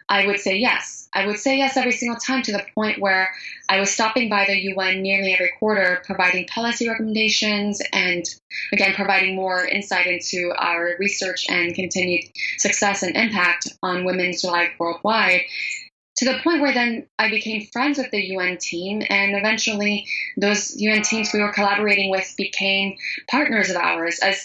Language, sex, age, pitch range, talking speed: English, female, 20-39, 185-210 Hz, 170 wpm